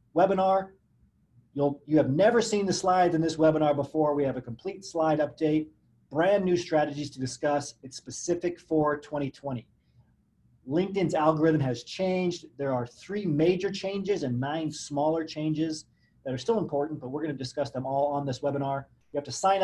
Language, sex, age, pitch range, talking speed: English, male, 30-49, 140-175 Hz, 175 wpm